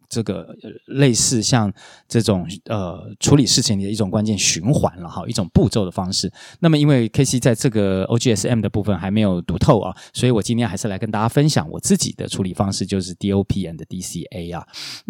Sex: male